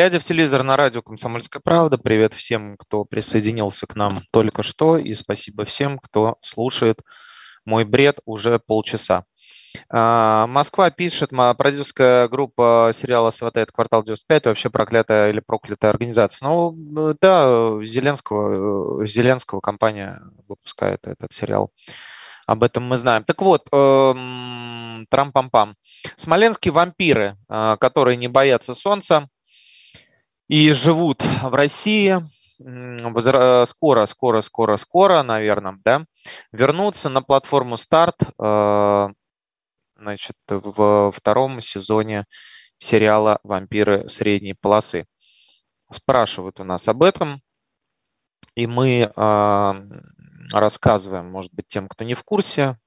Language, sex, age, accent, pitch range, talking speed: Russian, male, 20-39, native, 105-140 Hz, 105 wpm